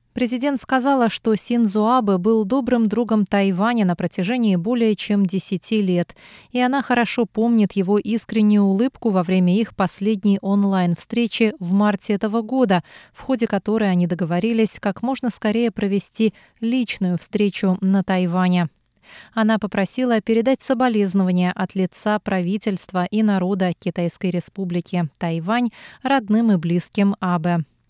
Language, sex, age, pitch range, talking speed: Russian, female, 30-49, 185-225 Hz, 130 wpm